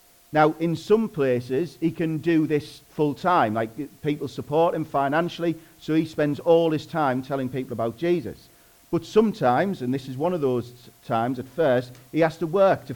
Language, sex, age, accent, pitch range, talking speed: English, male, 40-59, British, 130-160 Hz, 190 wpm